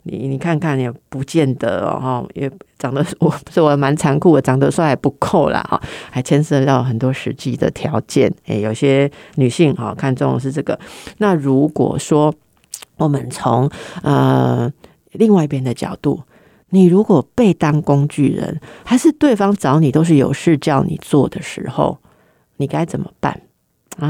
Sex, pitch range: female, 135-170 Hz